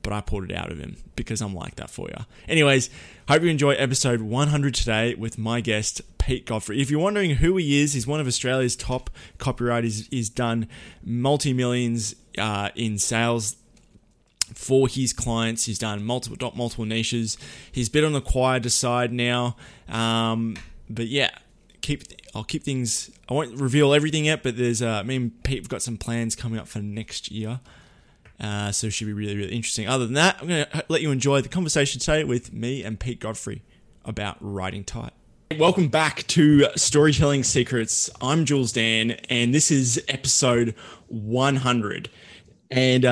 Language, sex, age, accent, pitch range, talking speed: English, male, 20-39, Australian, 110-135 Hz, 180 wpm